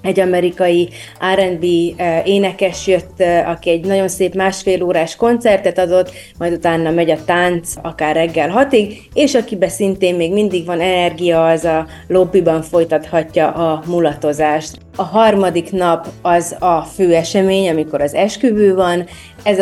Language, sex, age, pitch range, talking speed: English, female, 30-49, 165-190 Hz, 140 wpm